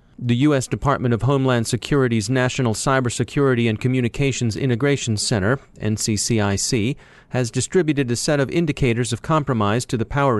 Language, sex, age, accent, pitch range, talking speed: English, male, 30-49, American, 115-140 Hz, 135 wpm